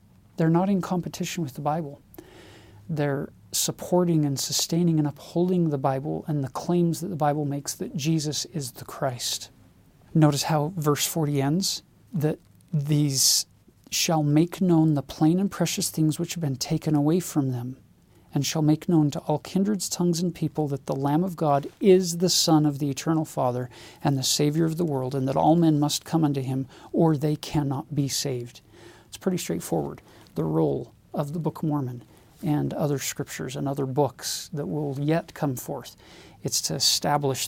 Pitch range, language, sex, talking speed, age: 135-165 Hz, English, male, 185 wpm, 40-59